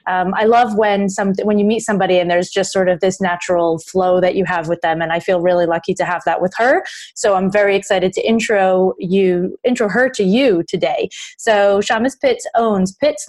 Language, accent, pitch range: English, American, 190-235 Hz